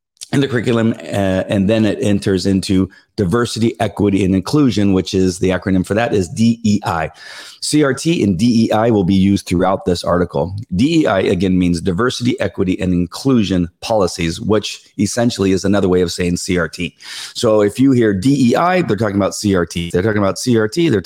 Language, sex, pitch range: English, male, 95-115 Hz